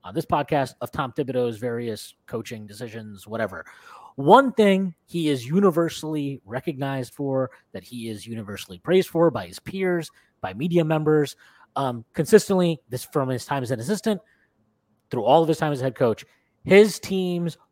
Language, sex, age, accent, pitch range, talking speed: English, male, 30-49, American, 120-170 Hz, 165 wpm